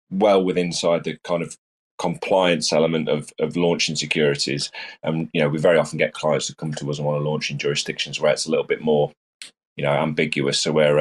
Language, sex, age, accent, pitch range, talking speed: English, male, 30-49, British, 75-85 Hz, 230 wpm